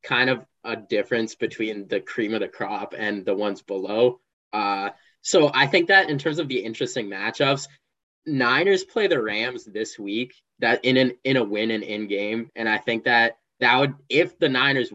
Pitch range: 110-140 Hz